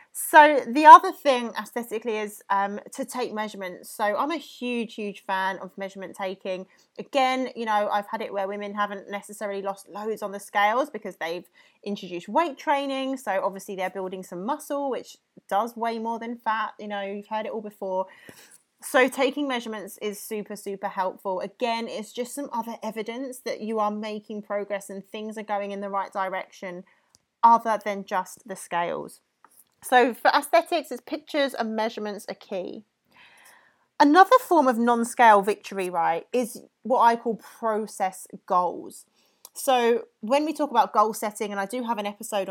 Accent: British